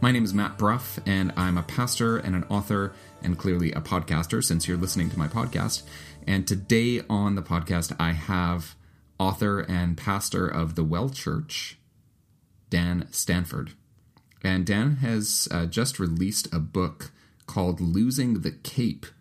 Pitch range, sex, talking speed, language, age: 80-100 Hz, male, 155 wpm, English, 30-49